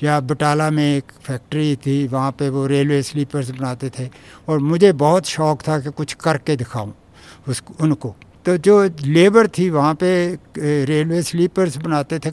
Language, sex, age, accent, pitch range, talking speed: English, male, 60-79, Indian, 140-170 Hz, 165 wpm